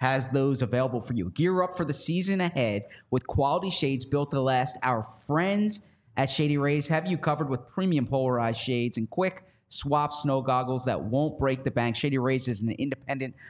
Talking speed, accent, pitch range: 195 wpm, American, 130-150 Hz